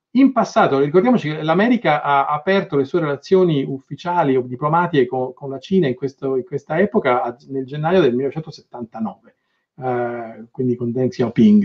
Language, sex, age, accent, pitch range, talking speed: Italian, male, 40-59, native, 125-180 Hz, 150 wpm